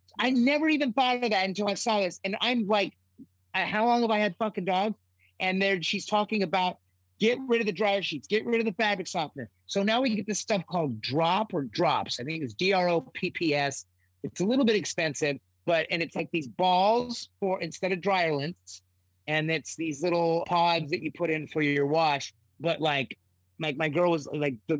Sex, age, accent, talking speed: male, 30-49, American, 225 wpm